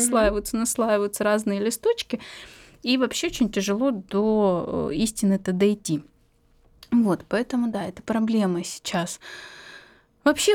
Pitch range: 180-230 Hz